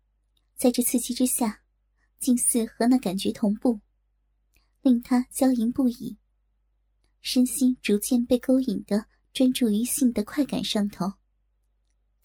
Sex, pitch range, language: male, 210-250 Hz, Chinese